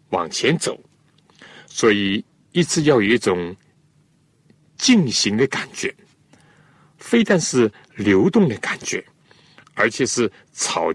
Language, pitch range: Chinese, 120-160 Hz